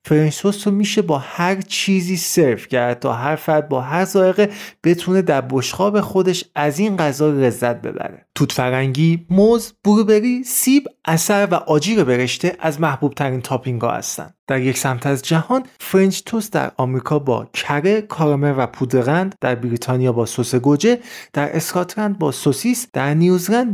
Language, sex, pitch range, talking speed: Persian, male, 140-210 Hz, 160 wpm